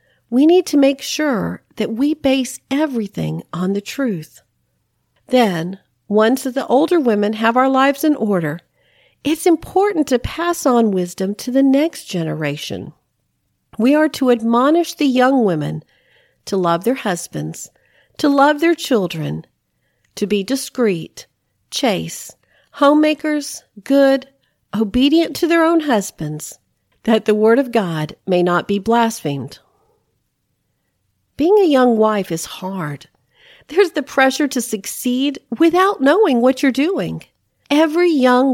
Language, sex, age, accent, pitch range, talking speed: English, female, 50-69, American, 195-285 Hz, 130 wpm